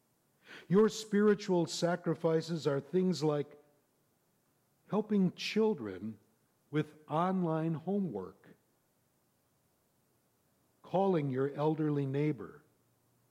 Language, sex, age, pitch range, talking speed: English, male, 60-79, 125-180 Hz, 70 wpm